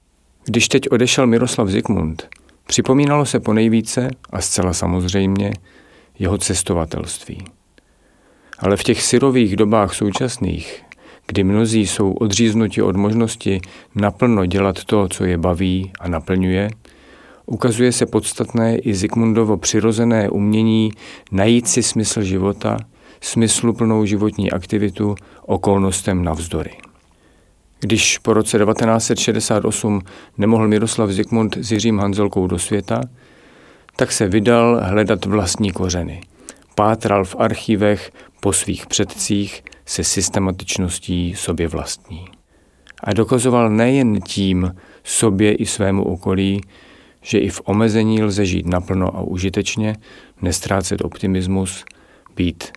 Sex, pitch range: male, 95-110 Hz